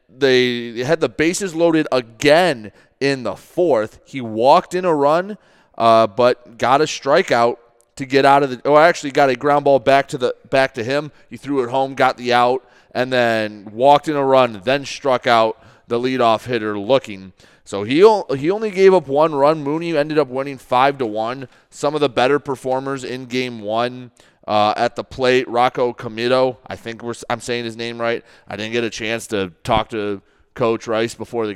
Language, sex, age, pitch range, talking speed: English, male, 30-49, 115-140 Hz, 200 wpm